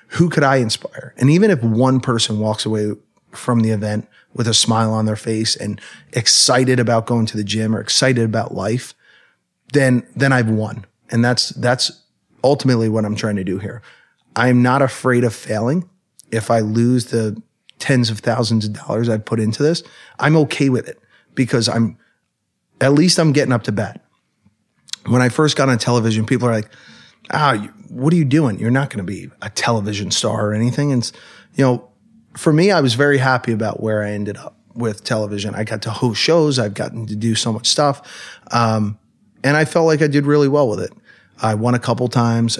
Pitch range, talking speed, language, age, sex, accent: 110-135 Hz, 205 wpm, English, 30-49, male, American